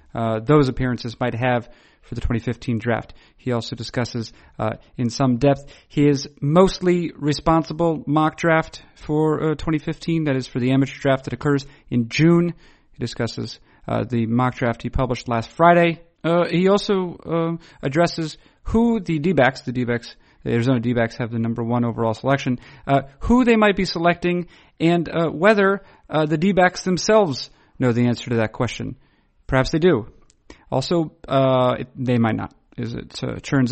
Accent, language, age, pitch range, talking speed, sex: American, English, 40-59, 120-160 Hz, 165 wpm, male